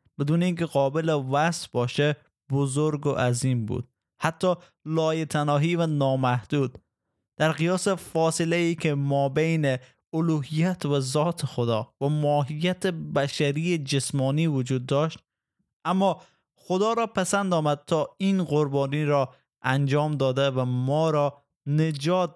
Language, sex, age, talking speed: Persian, male, 20-39, 120 wpm